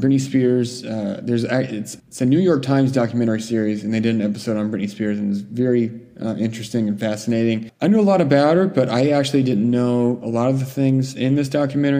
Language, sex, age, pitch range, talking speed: English, male, 20-39, 110-135 Hz, 230 wpm